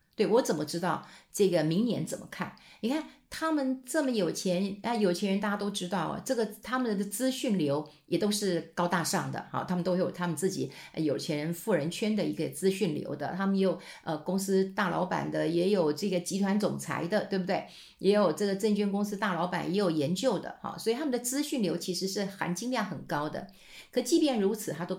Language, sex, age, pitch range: Chinese, female, 50-69, 180-240 Hz